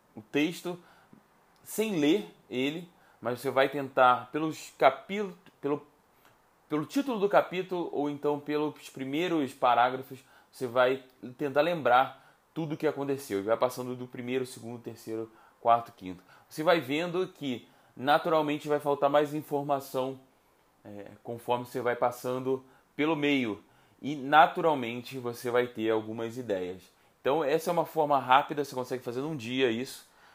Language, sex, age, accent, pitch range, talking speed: Portuguese, male, 20-39, Brazilian, 125-150 Hz, 135 wpm